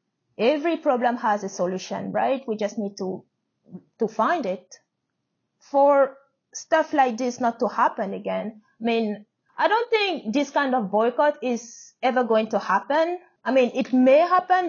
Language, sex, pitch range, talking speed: English, female, 215-285 Hz, 165 wpm